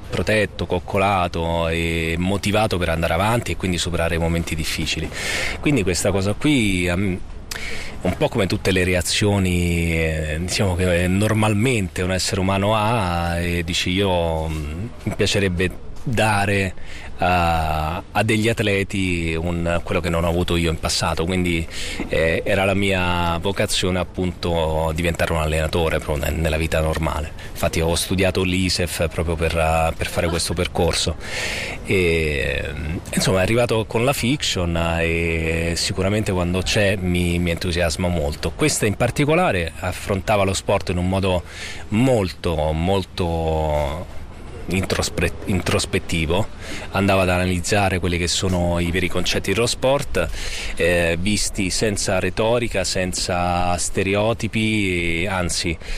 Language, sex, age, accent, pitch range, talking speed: Italian, male, 30-49, native, 85-100 Hz, 130 wpm